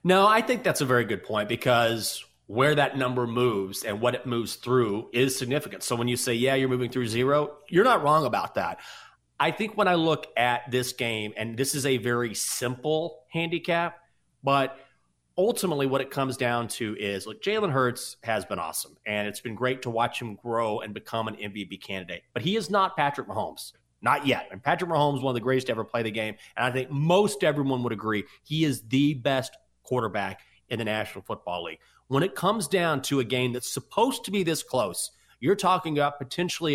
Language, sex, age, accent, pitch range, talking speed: English, male, 30-49, American, 115-150 Hz, 215 wpm